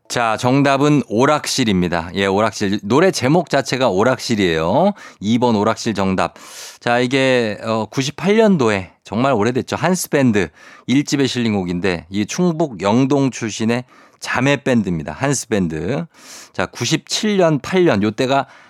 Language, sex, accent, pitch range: Korean, male, native, 100-135 Hz